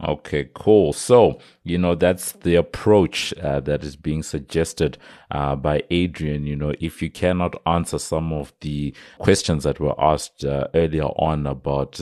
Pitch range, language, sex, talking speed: 70-80 Hz, English, male, 165 wpm